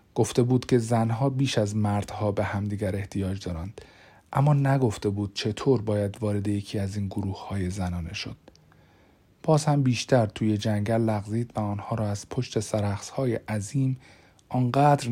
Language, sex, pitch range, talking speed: Persian, male, 105-135 Hz, 145 wpm